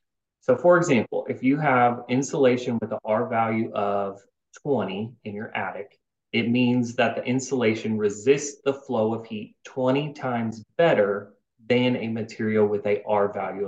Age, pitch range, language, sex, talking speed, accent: 30-49, 110-130 Hz, English, male, 160 wpm, American